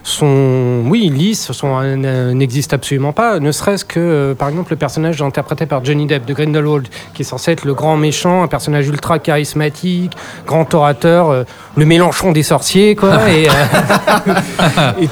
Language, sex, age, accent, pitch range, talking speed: French, male, 40-59, French, 140-180 Hz, 165 wpm